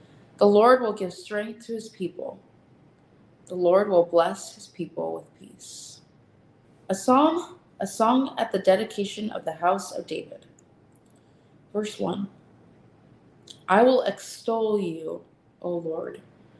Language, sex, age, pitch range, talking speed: English, female, 20-39, 175-225 Hz, 130 wpm